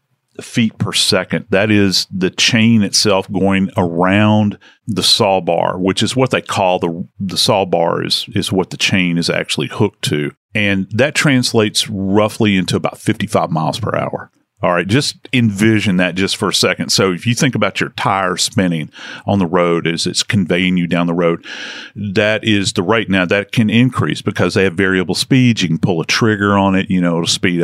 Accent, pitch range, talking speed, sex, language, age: American, 90-110 Hz, 200 wpm, male, English, 40-59